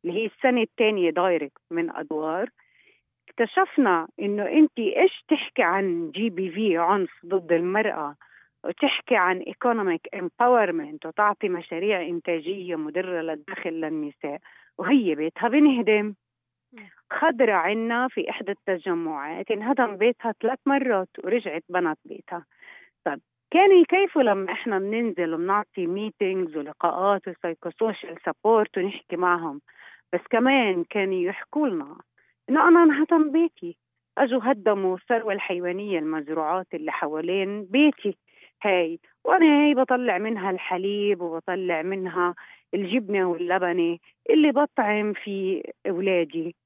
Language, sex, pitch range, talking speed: Arabic, female, 175-245 Hz, 115 wpm